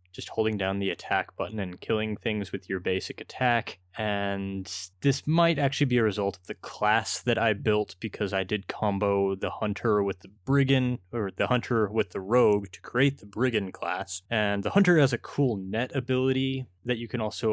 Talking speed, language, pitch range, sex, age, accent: 200 wpm, English, 95-120 Hz, male, 20-39, American